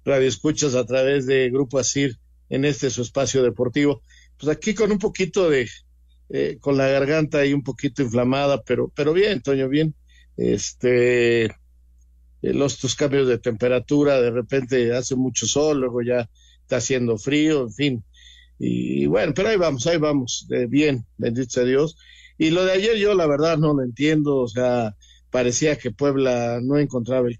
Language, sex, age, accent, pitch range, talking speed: Spanish, male, 50-69, Mexican, 125-155 Hz, 175 wpm